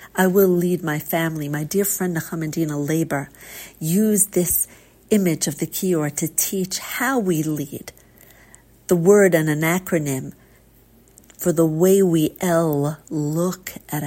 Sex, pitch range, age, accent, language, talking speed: female, 150-185 Hz, 50-69, American, English, 140 wpm